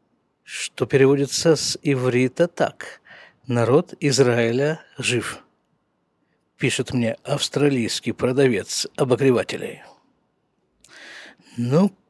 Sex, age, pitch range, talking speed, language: male, 50-69, 135-185 Hz, 70 wpm, Russian